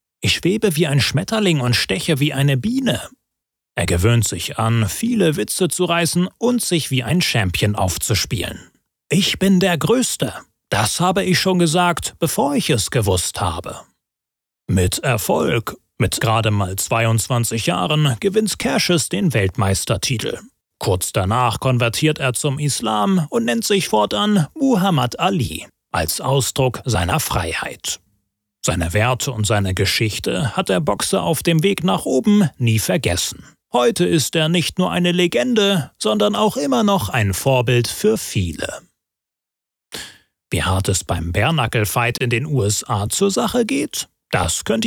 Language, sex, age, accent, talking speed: German, male, 30-49, German, 145 wpm